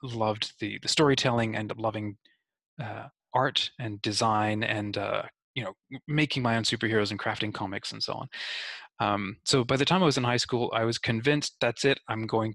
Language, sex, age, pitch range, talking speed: English, male, 20-39, 105-130 Hz, 195 wpm